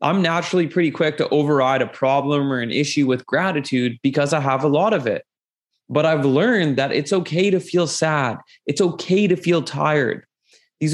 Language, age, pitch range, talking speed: English, 20-39, 145-195 Hz, 190 wpm